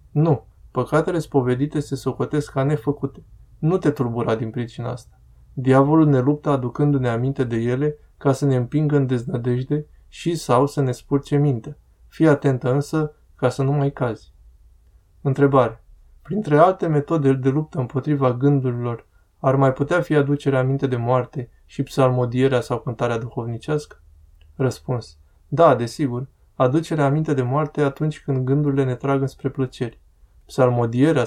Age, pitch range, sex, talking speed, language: 20-39, 120-145 Hz, male, 145 wpm, Romanian